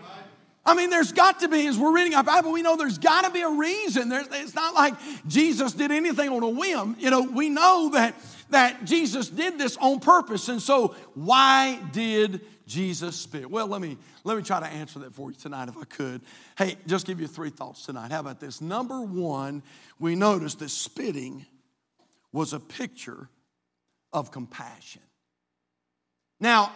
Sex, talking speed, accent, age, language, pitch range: male, 180 wpm, American, 50-69, English, 190-290 Hz